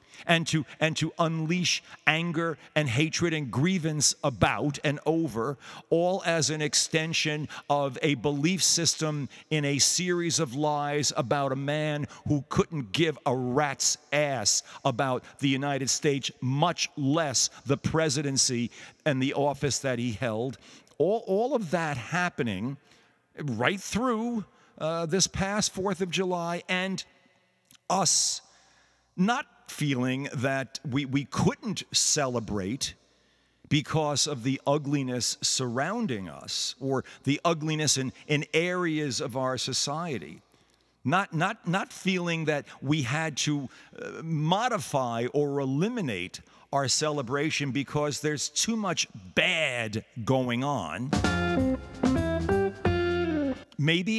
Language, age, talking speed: English, 50-69, 120 wpm